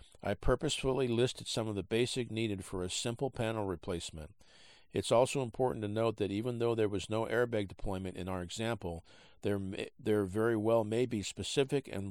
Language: English